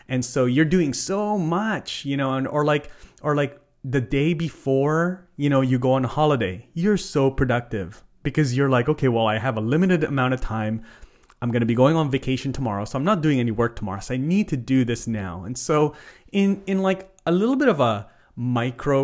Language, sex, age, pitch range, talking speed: English, male, 30-49, 115-150 Hz, 225 wpm